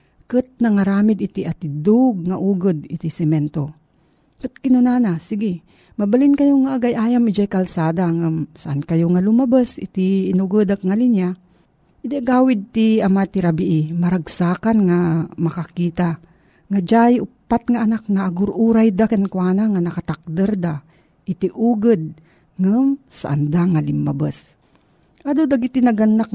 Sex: female